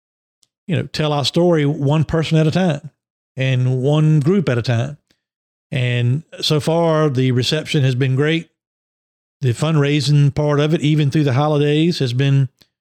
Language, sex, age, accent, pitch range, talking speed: English, male, 50-69, American, 130-155 Hz, 165 wpm